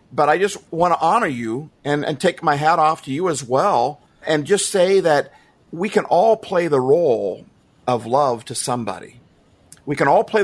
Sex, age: male, 50-69